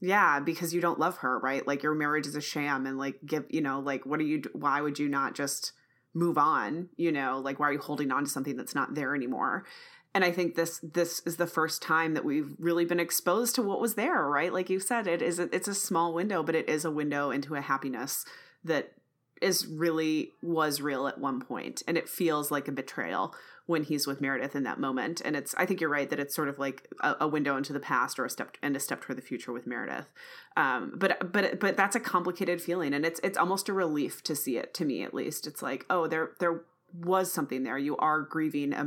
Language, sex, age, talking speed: English, female, 30-49, 250 wpm